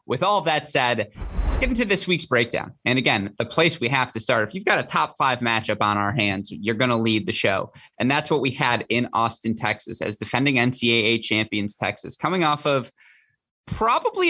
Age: 20-39